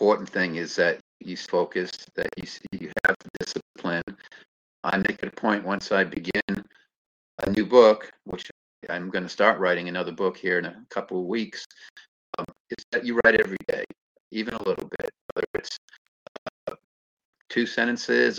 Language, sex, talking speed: English, male, 175 wpm